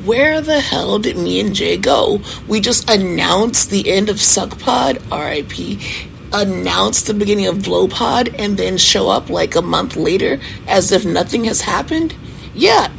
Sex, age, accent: female, 30-49, American